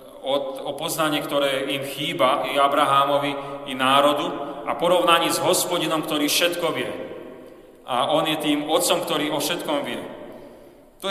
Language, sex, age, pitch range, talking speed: Slovak, male, 40-59, 140-170 Hz, 145 wpm